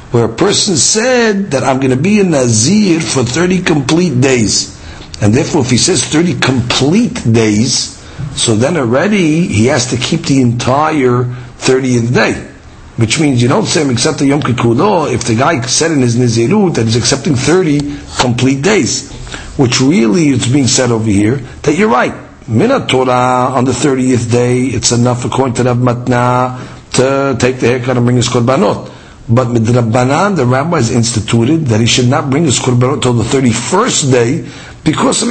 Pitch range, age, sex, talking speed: 120-150 Hz, 50-69, male, 175 wpm